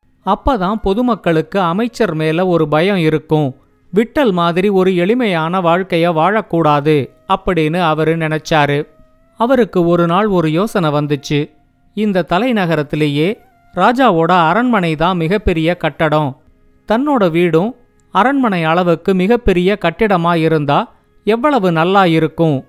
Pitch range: 160-205 Hz